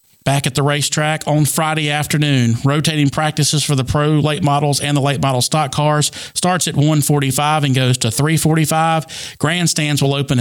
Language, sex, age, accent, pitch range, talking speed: English, male, 40-59, American, 135-160 Hz, 175 wpm